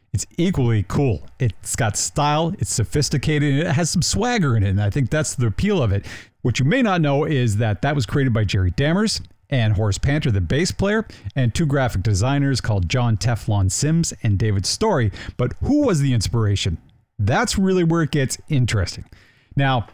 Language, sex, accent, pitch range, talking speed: English, male, American, 105-140 Hz, 195 wpm